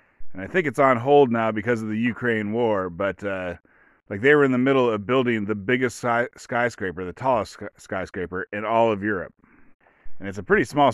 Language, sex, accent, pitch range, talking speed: English, male, American, 100-125 Hz, 205 wpm